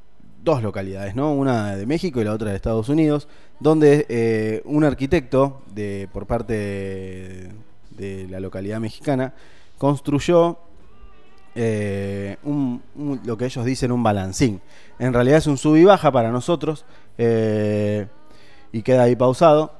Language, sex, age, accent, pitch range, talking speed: Spanish, male, 20-39, Argentinian, 105-140 Hz, 145 wpm